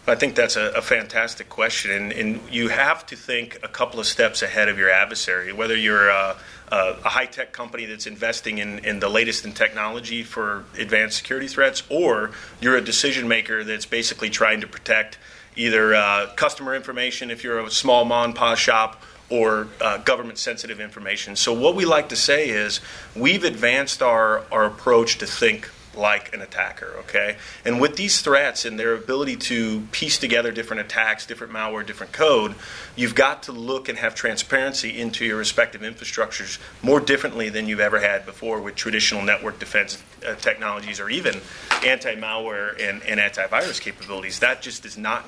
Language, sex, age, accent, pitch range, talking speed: English, male, 30-49, American, 110-120 Hz, 175 wpm